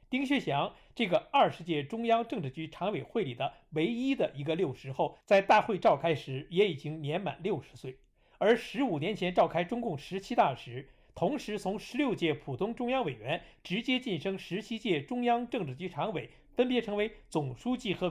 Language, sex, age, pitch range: Chinese, male, 50-69, 150-230 Hz